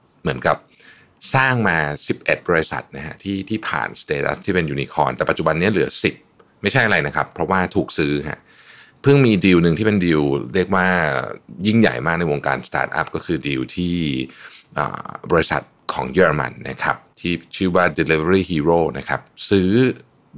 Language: Thai